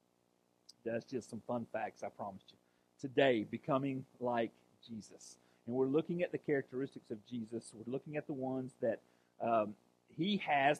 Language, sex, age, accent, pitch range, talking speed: English, male, 40-59, American, 135-225 Hz, 160 wpm